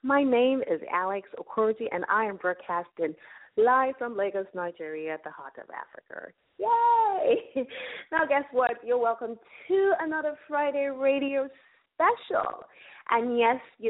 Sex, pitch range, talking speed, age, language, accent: female, 185-280 Hz, 140 wpm, 30-49, English, American